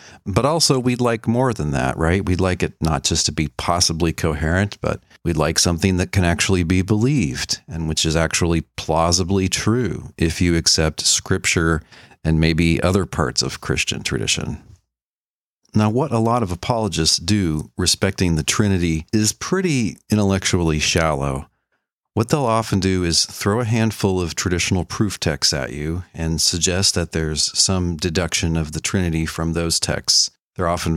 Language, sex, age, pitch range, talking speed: English, male, 40-59, 80-100 Hz, 165 wpm